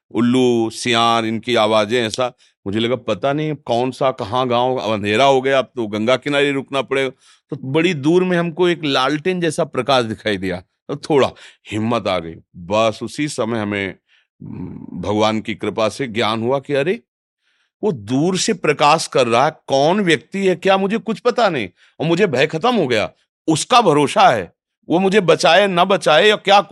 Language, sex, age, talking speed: Hindi, male, 40-59, 180 wpm